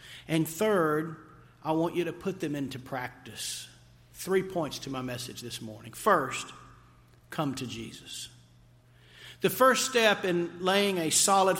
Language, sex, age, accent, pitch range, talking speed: English, male, 50-69, American, 145-200 Hz, 145 wpm